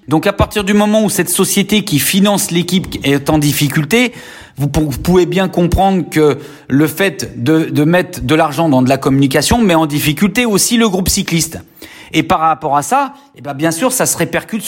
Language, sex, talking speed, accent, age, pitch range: French, male, 195 wpm, French, 40-59, 145-185 Hz